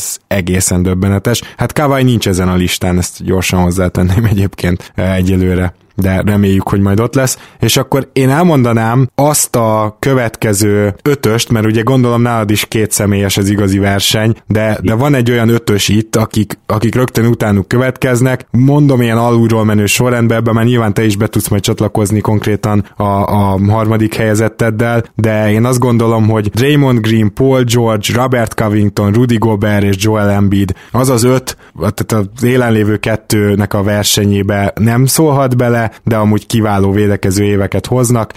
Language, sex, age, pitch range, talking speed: Hungarian, male, 20-39, 100-115 Hz, 160 wpm